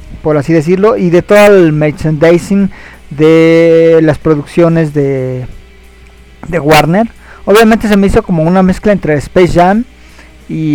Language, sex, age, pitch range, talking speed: Spanish, male, 40-59, 140-175 Hz, 140 wpm